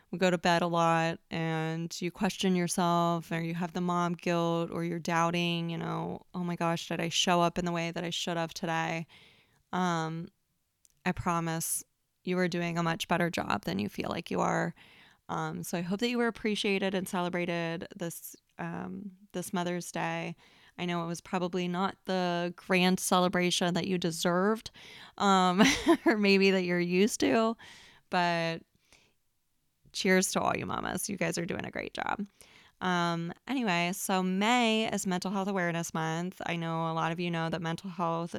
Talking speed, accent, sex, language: 180 wpm, American, female, English